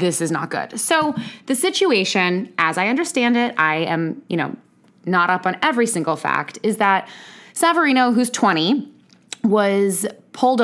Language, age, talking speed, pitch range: English, 20-39, 160 wpm, 165-220 Hz